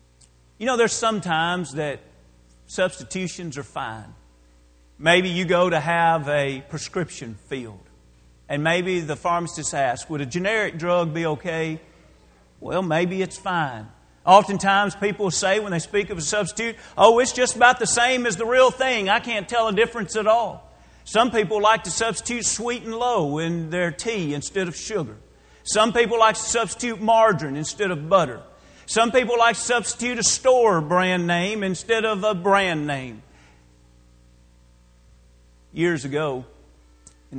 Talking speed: 155 wpm